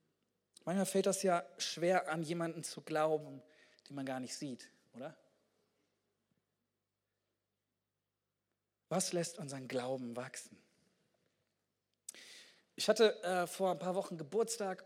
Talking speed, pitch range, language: 115 wpm, 130-180 Hz, German